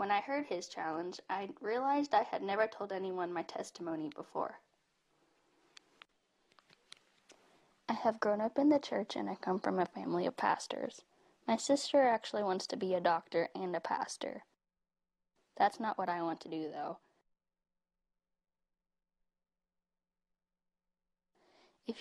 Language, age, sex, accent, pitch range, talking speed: English, 10-29, female, American, 175-225 Hz, 135 wpm